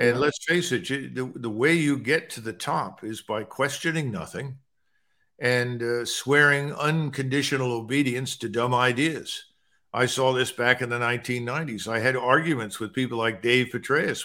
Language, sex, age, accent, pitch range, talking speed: English, male, 50-69, American, 115-145 Hz, 165 wpm